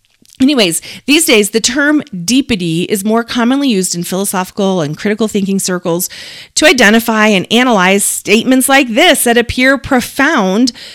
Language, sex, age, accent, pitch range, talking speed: English, female, 40-59, American, 200-270 Hz, 140 wpm